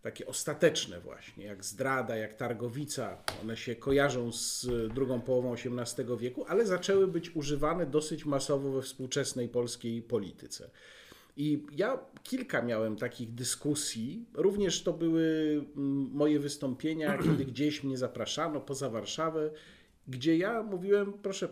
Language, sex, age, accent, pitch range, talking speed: Polish, male, 40-59, native, 135-175 Hz, 130 wpm